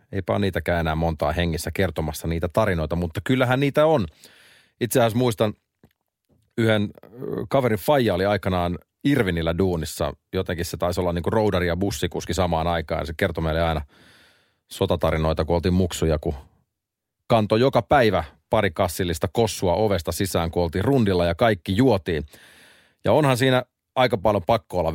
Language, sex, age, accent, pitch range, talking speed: Finnish, male, 30-49, native, 85-105 Hz, 145 wpm